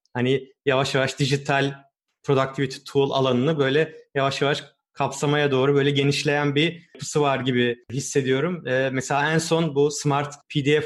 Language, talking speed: Turkish, 145 wpm